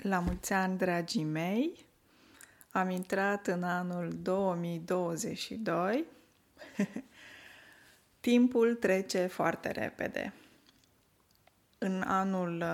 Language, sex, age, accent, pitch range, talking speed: Romanian, female, 20-39, native, 175-225 Hz, 70 wpm